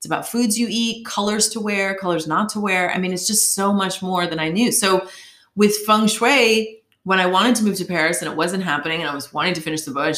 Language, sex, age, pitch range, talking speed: English, female, 30-49, 170-235 Hz, 265 wpm